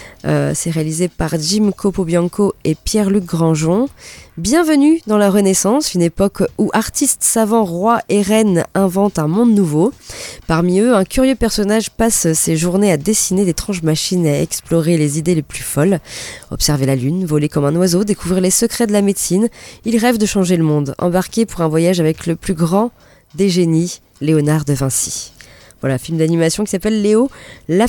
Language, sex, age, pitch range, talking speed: French, female, 20-39, 165-220 Hz, 180 wpm